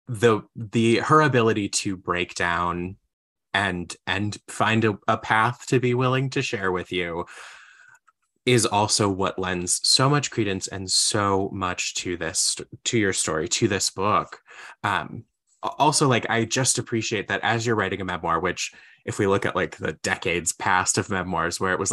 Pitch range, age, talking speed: 95-115 Hz, 20-39, 175 wpm